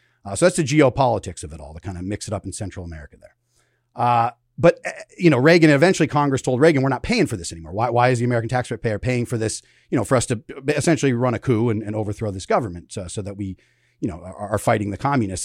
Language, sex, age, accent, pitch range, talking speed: English, male, 40-59, American, 105-130 Hz, 260 wpm